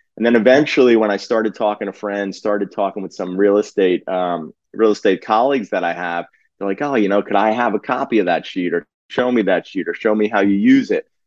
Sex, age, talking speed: male, 30-49, 250 wpm